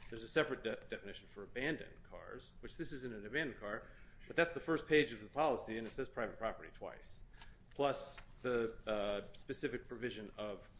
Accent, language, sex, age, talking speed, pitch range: American, English, male, 30-49, 190 wpm, 105-130 Hz